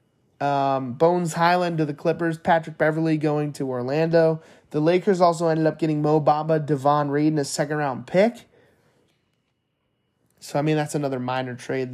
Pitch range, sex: 140-170 Hz, male